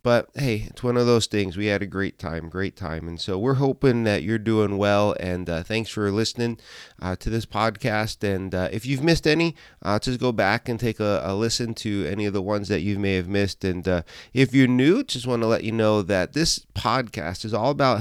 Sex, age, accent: male, 30-49, American